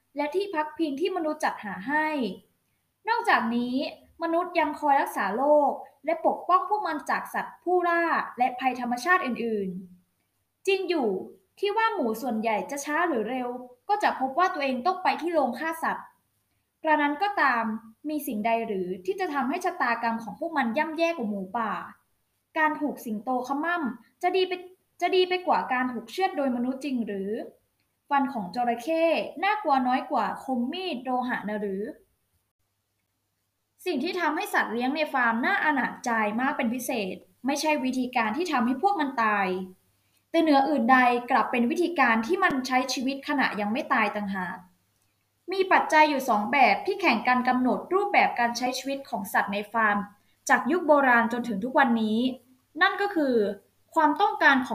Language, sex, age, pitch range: Thai, female, 20-39, 230-320 Hz